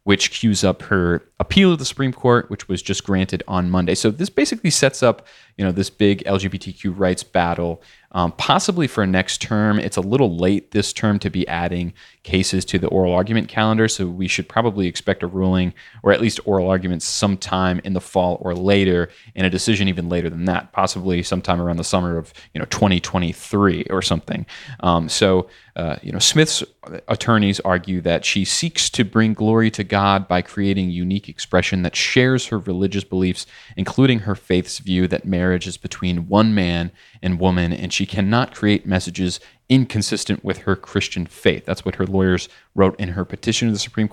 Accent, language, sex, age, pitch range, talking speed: American, English, male, 30-49, 90-110 Hz, 195 wpm